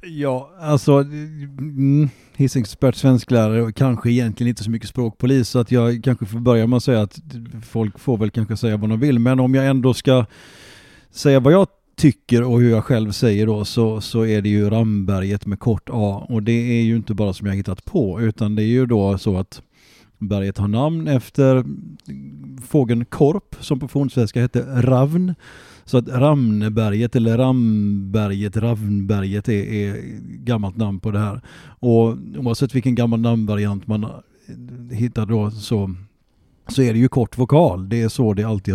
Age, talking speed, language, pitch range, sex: 30-49, 175 wpm, Swedish, 105-130 Hz, male